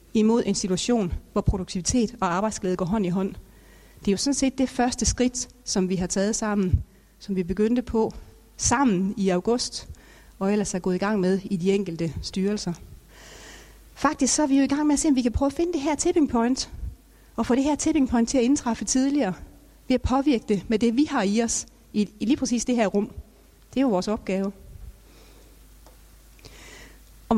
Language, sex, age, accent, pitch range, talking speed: Danish, female, 40-59, native, 210-275 Hz, 205 wpm